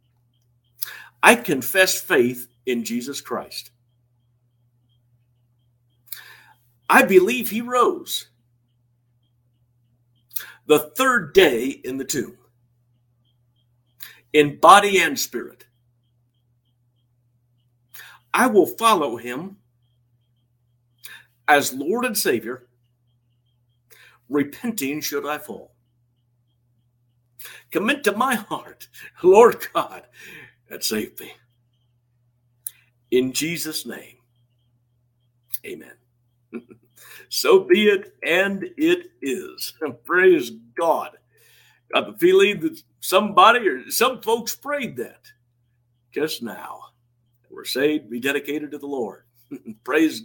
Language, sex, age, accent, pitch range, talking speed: English, male, 60-79, American, 120-155 Hz, 85 wpm